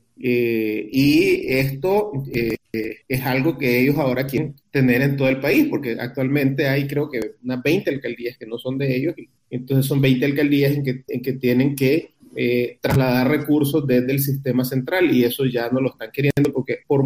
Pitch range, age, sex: 125-150 Hz, 30-49, male